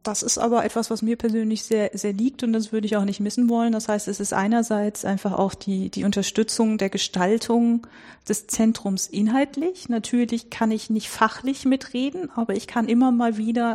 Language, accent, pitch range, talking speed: German, German, 200-230 Hz, 195 wpm